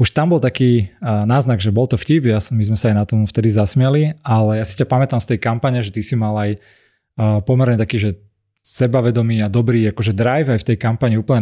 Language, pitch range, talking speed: Slovak, 110-125 Hz, 235 wpm